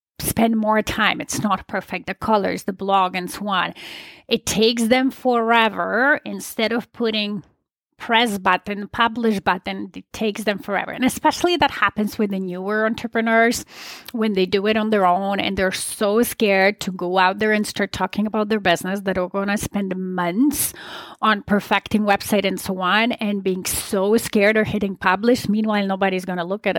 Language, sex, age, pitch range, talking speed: English, female, 30-49, 195-245 Hz, 185 wpm